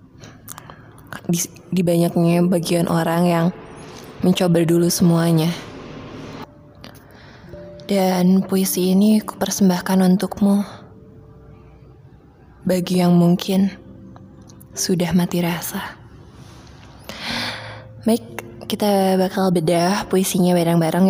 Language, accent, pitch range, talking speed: Indonesian, native, 130-190 Hz, 75 wpm